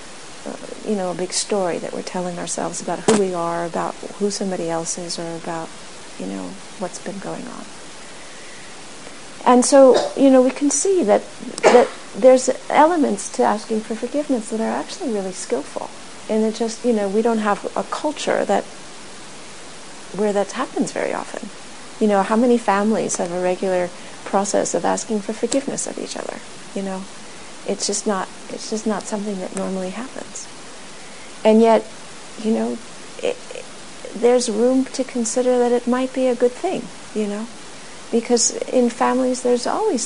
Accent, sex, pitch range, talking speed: American, female, 200-250 Hz, 170 wpm